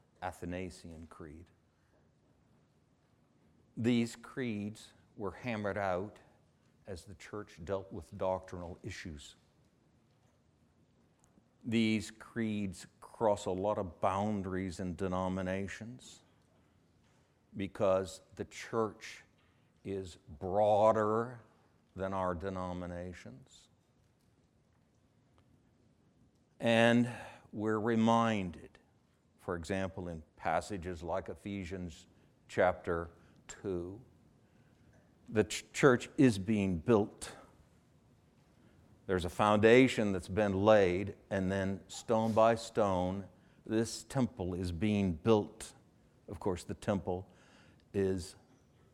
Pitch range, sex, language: 90-110 Hz, male, English